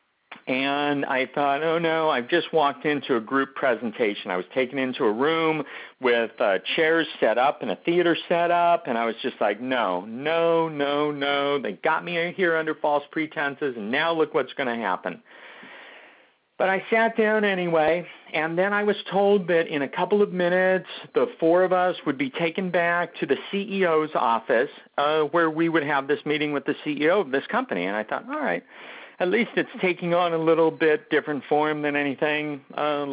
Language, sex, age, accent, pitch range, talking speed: English, male, 50-69, American, 155-185 Hz, 200 wpm